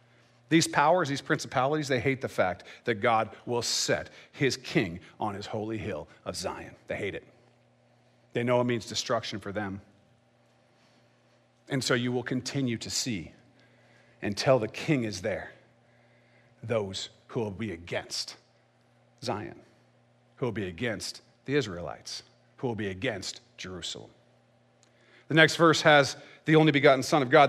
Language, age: English, 40-59